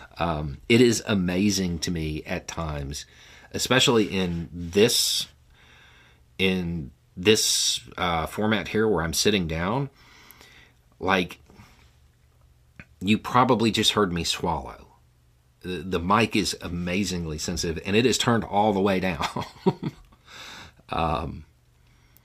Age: 40-59